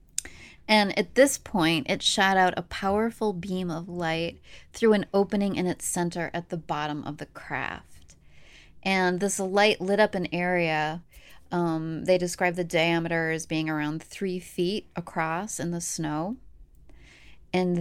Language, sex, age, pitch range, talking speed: English, female, 20-39, 165-195 Hz, 155 wpm